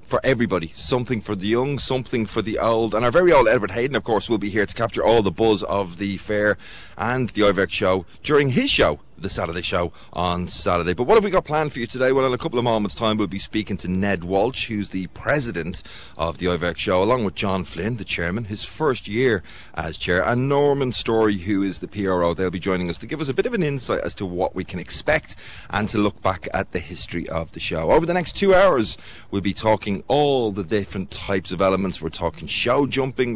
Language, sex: English, male